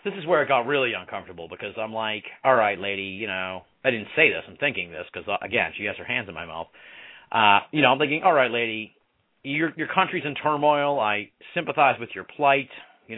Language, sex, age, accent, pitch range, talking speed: English, male, 40-59, American, 115-170 Hz, 230 wpm